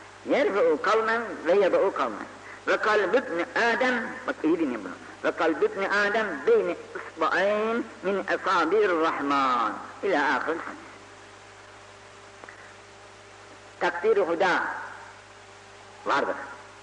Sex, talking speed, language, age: female, 80 wpm, Turkish, 60-79